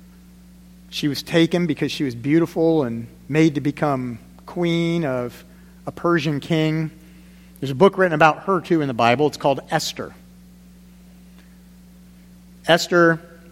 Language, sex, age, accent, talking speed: English, male, 40-59, American, 135 wpm